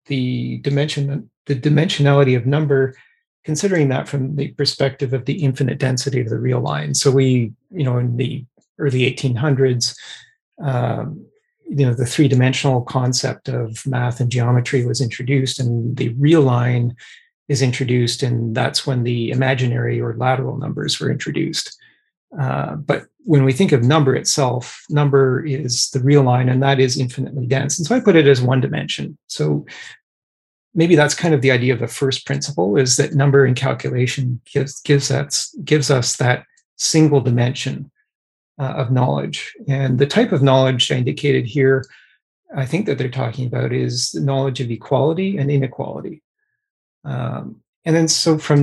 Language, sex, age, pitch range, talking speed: English, male, 30-49, 125-145 Hz, 165 wpm